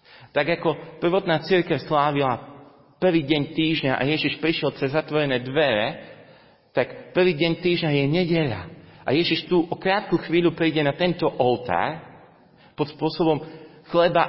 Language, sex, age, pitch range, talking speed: Slovak, male, 40-59, 130-160 Hz, 140 wpm